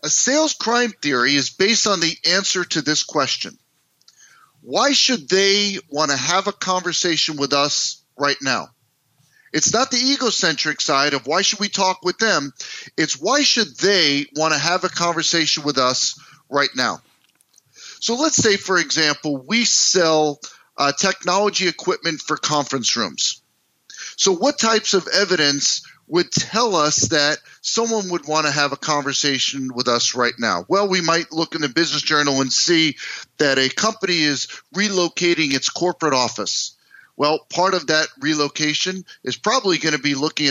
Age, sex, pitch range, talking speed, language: 40-59, male, 145-195 Hz, 165 wpm, English